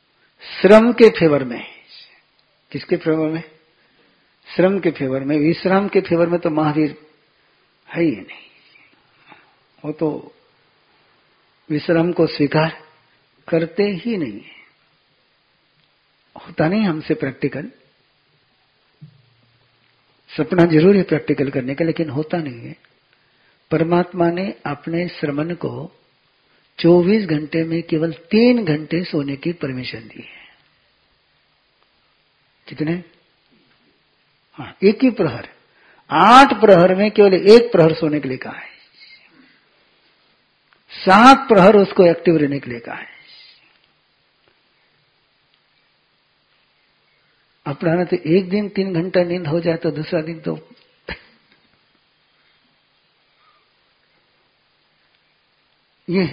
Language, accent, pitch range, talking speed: Hindi, native, 150-185 Hz, 105 wpm